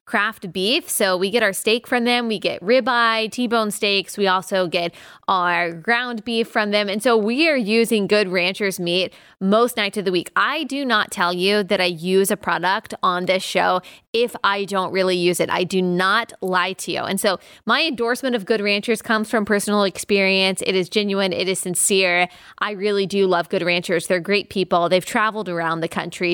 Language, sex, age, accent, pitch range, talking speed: English, female, 20-39, American, 185-235 Hz, 210 wpm